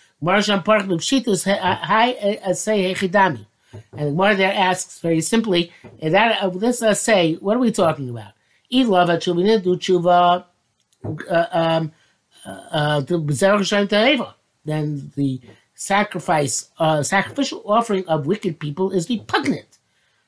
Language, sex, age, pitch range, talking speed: English, male, 50-69, 150-205 Hz, 75 wpm